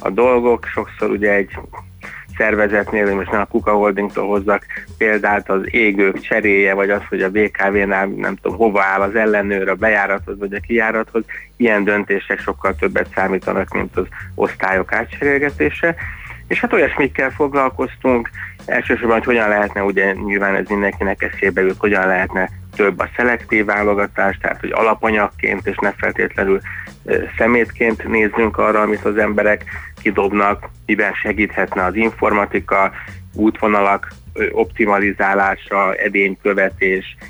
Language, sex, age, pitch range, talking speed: Hungarian, male, 20-39, 95-105 Hz, 135 wpm